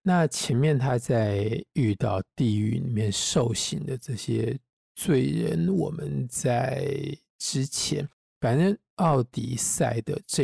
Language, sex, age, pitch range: Chinese, male, 50-69, 115-145 Hz